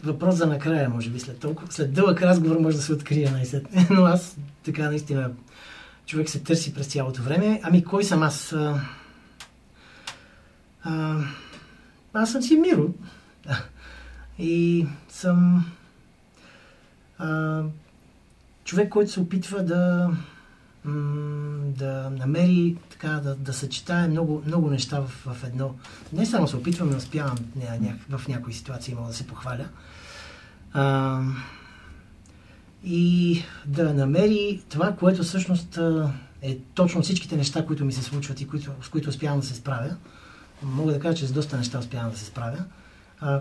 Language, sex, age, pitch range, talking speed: Bulgarian, male, 30-49, 135-170 Hz, 140 wpm